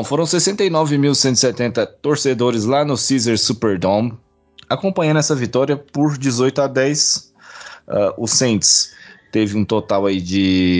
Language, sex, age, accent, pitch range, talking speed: Portuguese, male, 20-39, Brazilian, 95-125 Hz, 120 wpm